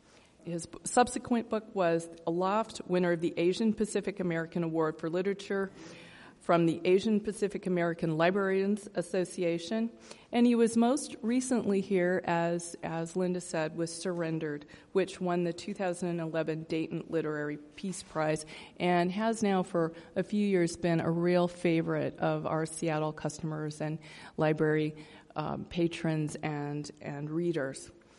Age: 40-59